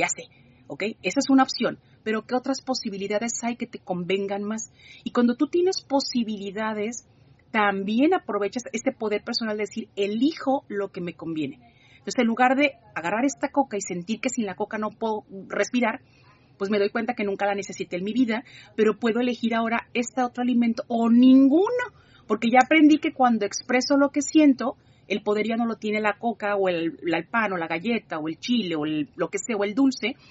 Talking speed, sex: 205 wpm, female